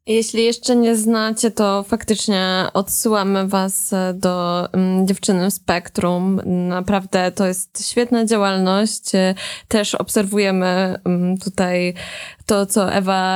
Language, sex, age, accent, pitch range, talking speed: Polish, female, 20-39, native, 190-230 Hz, 100 wpm